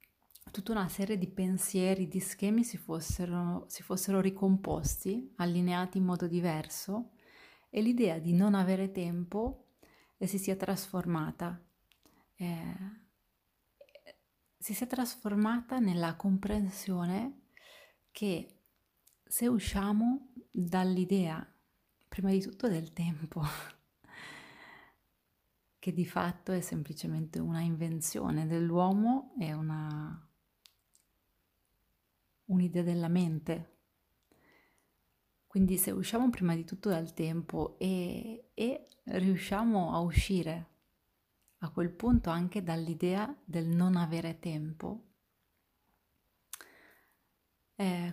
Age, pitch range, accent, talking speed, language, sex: 30-49, 170-205 Hz, native, 95 wpm, Italian, female